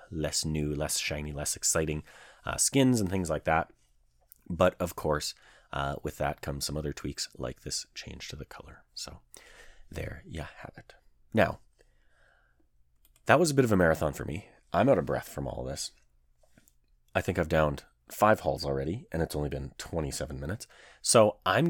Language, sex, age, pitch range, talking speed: English, male, 30-49, 75-105 Hz, 180 wpm